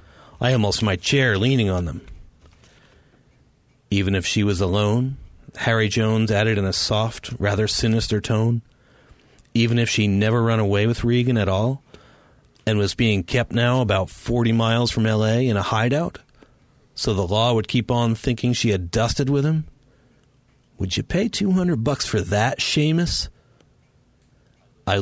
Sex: male